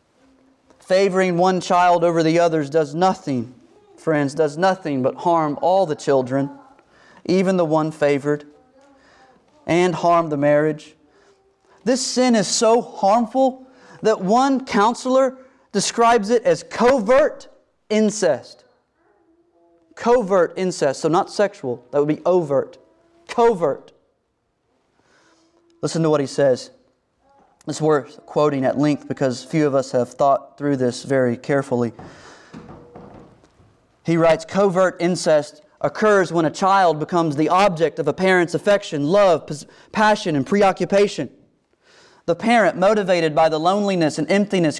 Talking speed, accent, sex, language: 125 wpm, American, male, English